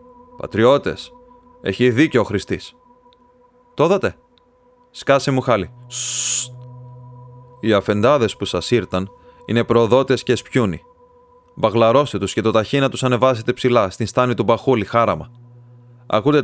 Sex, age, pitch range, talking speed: male, 30-49, 105-135 Hz, 125 wpm